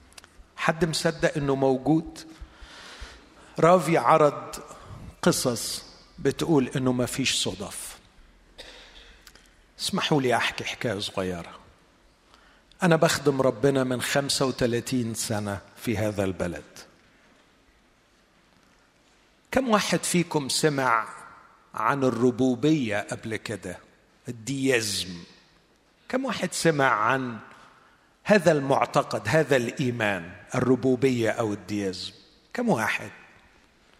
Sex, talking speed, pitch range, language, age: male, 85 wpm, 120-155 Hz, Arabic, 50-69